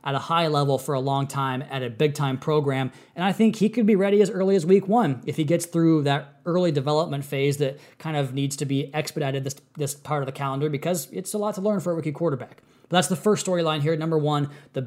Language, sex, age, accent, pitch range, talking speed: English, male, 20-39, American, 145-185 Hz, 260 wpm